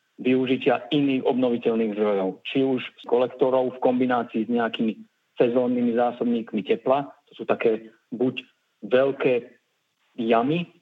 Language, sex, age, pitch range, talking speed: Slovak, male, 40-59, 115-130 Hz, 115 wpm